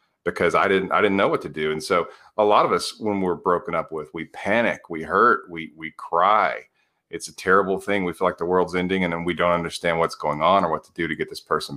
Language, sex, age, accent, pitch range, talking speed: English, male, 40-59, American, 80-100 Hz, 270 wpm